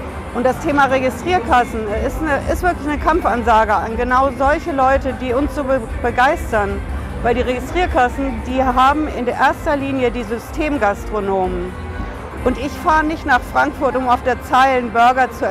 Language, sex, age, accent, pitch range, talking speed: German, female, 50-69, German, 245-290 Hz, 160 wpm